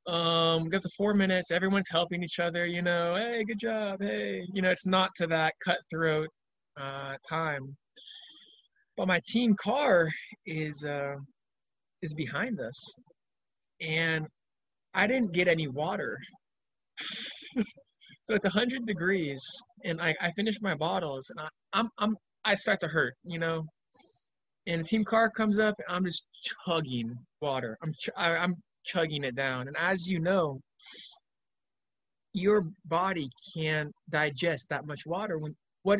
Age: 20-39